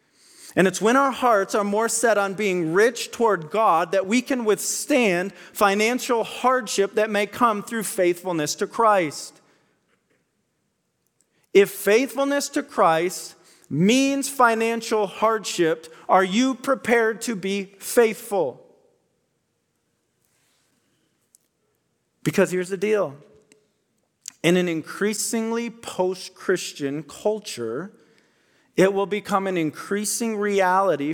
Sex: male